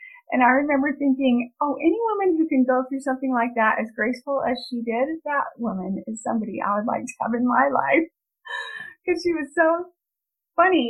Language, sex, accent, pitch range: English, female, American, 230-295 Hz